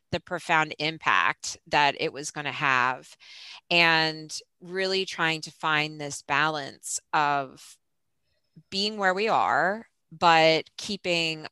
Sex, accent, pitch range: female, American, 150-185 Hz